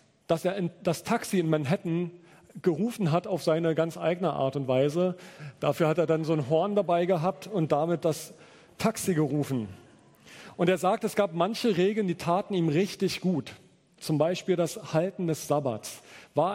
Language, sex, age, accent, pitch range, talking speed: German, male, 40-59, German, 155-185 Hz, 175 wpm